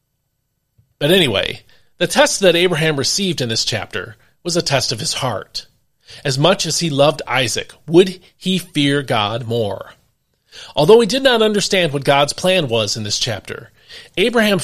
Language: English